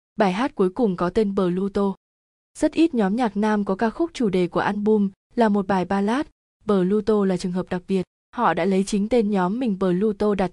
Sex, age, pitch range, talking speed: female, 20-39, 185-230 Hz, 235 wpm